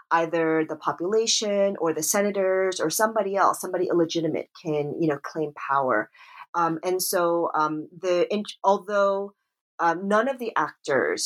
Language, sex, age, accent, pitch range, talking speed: English, female, 30-49, American, 155-200 Hz, 145 wpm